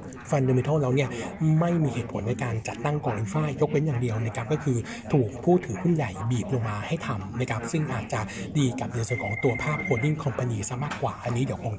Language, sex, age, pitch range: Thai, male, 60-79, 120-150 Hz